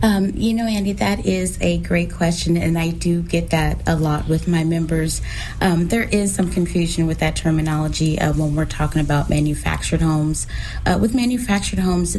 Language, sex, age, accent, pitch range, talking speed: English, female, 30-49, American, 155-175 Hz, 185 wpm